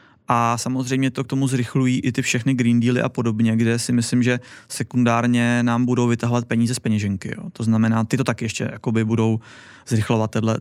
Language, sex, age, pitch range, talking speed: Czech, male, 20-39, 115-135 Hz, 190 wpm